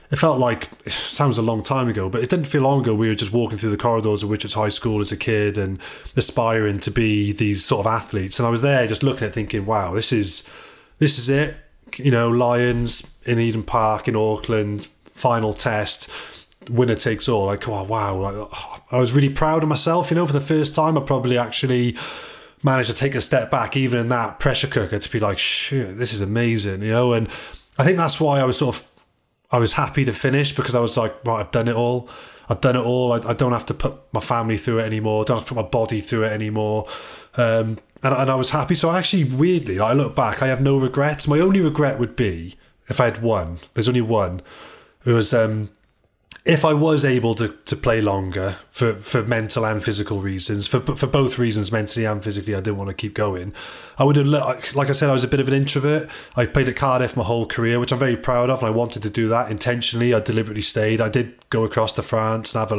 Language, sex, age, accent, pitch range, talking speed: English, male, 20-39, British, 110-130 Hz, 245 wpm